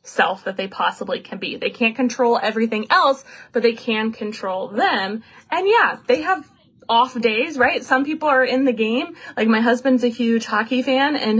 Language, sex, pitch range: English, female, 205-250 Hz